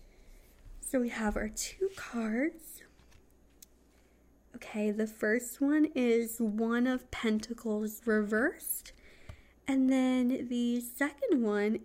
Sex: female